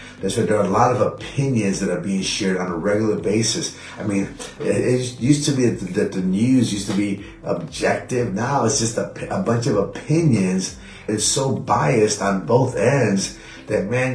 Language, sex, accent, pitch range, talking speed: English, male, American, 100-125 Hz, 190 wpm